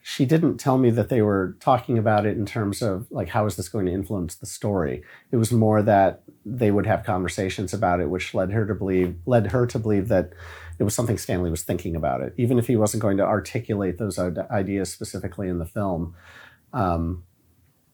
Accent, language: American, English